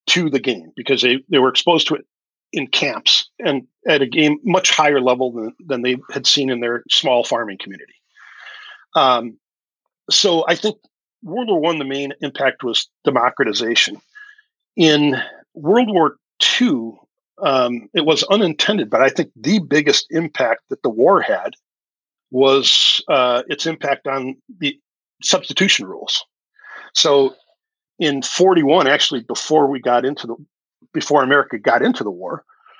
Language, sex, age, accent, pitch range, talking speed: English, male, 50-69, American, 130-190 Hz, 150 wpm